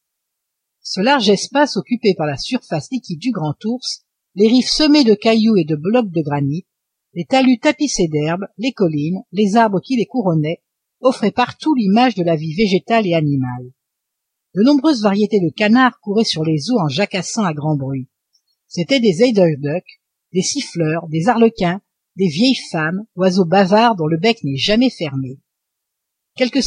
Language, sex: French, female